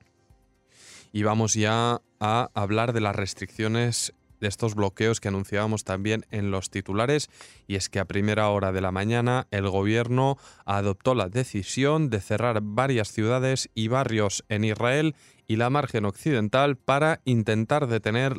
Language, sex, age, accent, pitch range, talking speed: Spanish, male, 20-39, Spanish, 100-130 Hz, 150 wpm